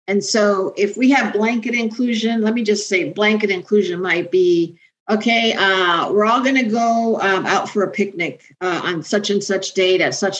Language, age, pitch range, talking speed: English, 50-69, 185-225 Hz, 195 wpm